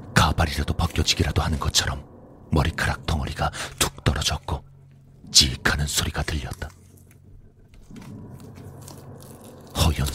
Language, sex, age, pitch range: Korean, male, 40-59, 75-125 Hz